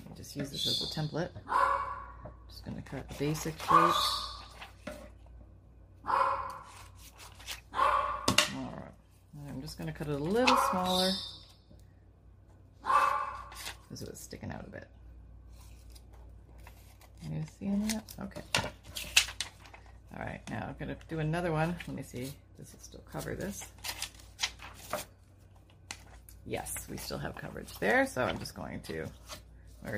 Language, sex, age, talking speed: English, female, 30-49, 135 wpm